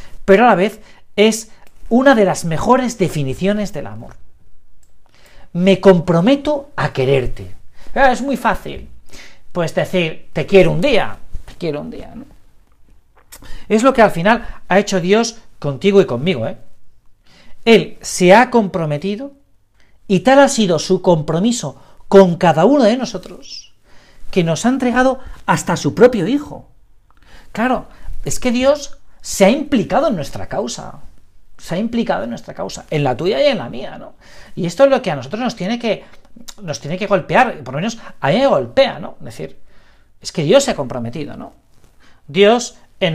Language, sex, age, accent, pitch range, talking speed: Spanish, male, 50-69, Spanish, 165-245 Hz, 170 wpm